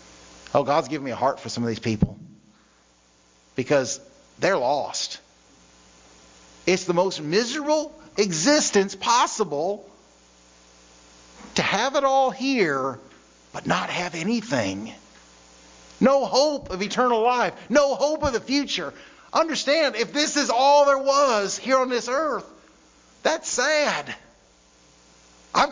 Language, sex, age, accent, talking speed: English, male, 50-69, American, 125 wpm